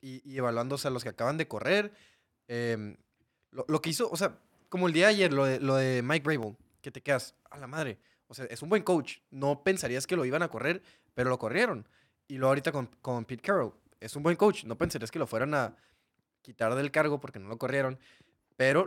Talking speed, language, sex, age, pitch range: 230 wpm, Spanish, male, 20-39, 125-155 Hz